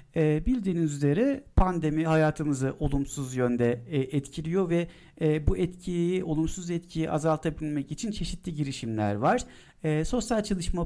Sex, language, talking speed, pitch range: male, Turkish, 105 wpm, 125-165 Hz